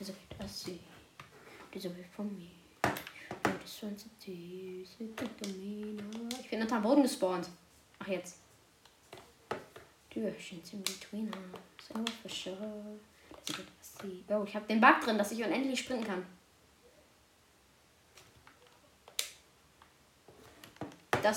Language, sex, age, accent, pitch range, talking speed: German, female, 20-39, German, 185-225 Hz, 60 wpm